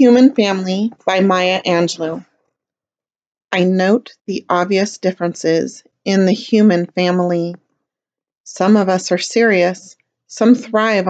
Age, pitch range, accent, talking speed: 40-59, 175-205 Hz, American, 115 wpm